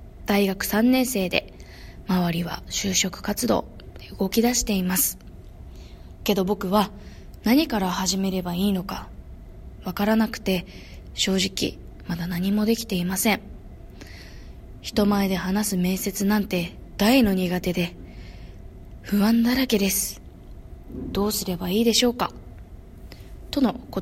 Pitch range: 185-240 Hz